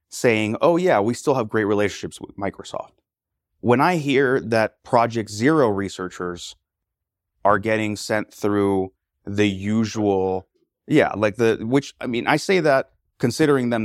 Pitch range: 95-115 Hz